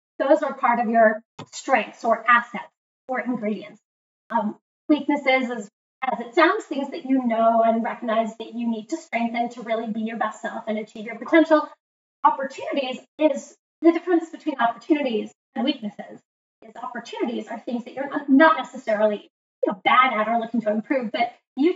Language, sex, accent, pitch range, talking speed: English, female, American, 225-280 Hz, 175 wpm